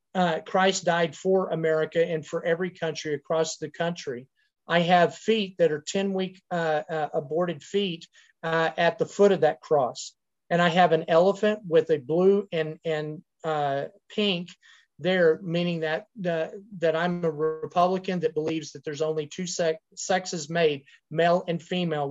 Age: 40-59